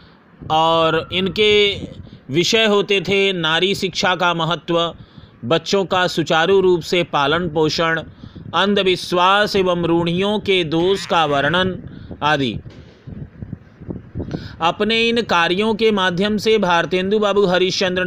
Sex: male